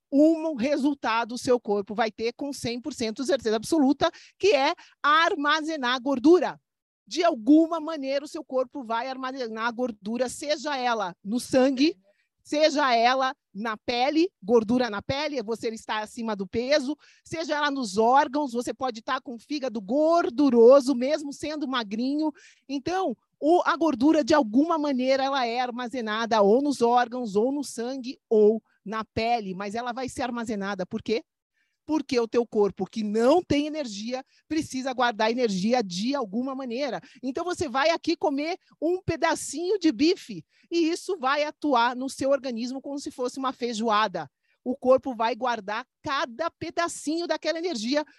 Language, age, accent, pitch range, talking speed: Portuguese, 40-59, Brazilian, 235-300 Hz, 150 wpm